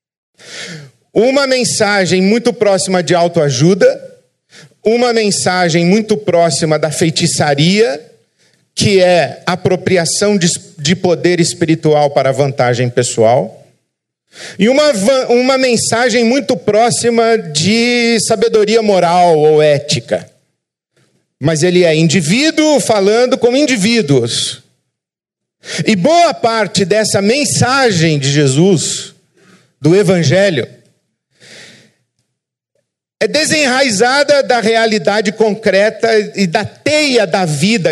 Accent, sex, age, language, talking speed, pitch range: Brazilian, male, 50-69, Portuguese, 90 wpm, 165-230 Hz